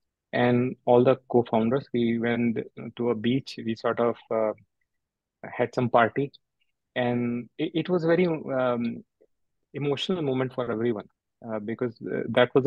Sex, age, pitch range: male, 30-49, 120-140 Hz